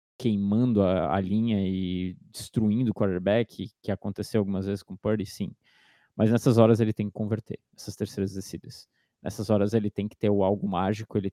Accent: Brazilian